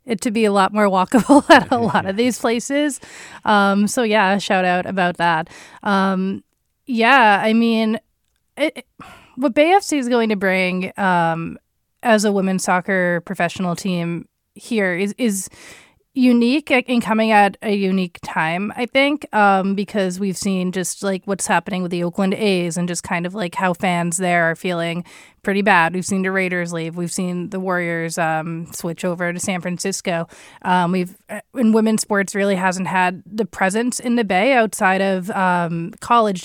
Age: 20-39